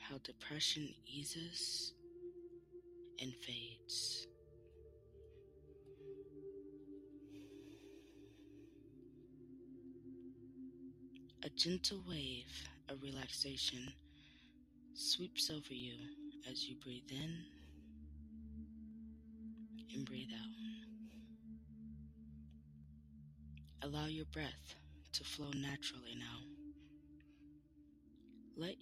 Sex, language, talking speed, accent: female, English, 55 wpm, American